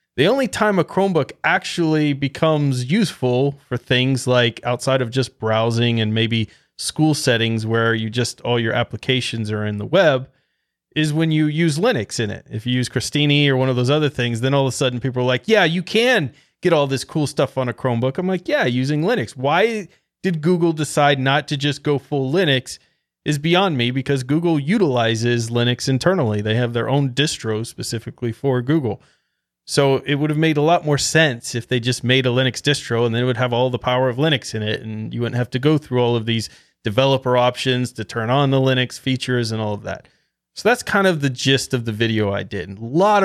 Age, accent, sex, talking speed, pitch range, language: 30-49, American, male, 220 wpm, 120-155 Hz, English